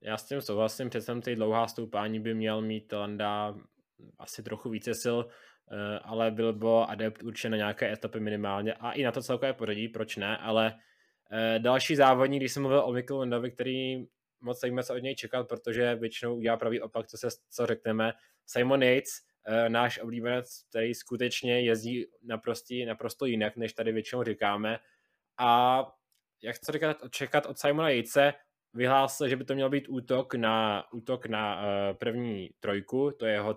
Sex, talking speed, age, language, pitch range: male, 170 wpm, 20-39, Czech, 110-130 Hz